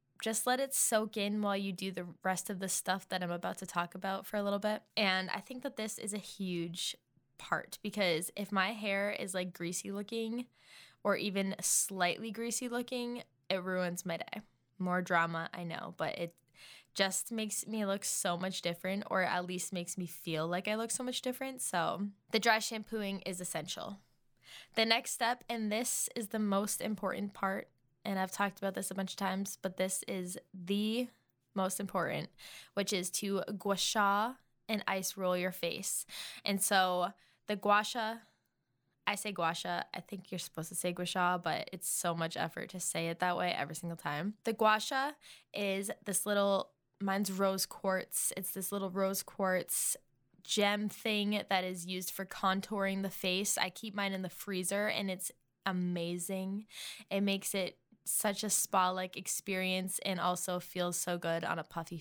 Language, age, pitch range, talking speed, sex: English, 10-29, 180-210 Hz, 185 wpm, female